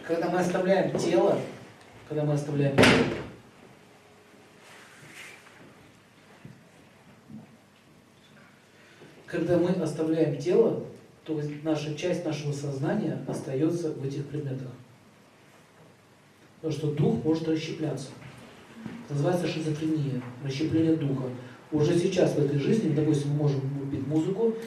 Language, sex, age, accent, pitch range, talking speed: Russian, male, 40-59, native, 145-170 Hz, 100 wpm